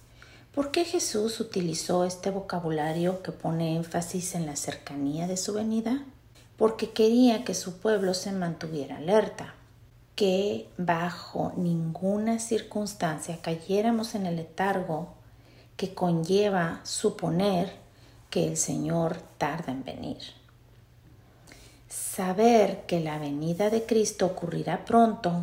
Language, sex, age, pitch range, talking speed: Spanish, female, 40-59, 150-215 Hz, 115 wpm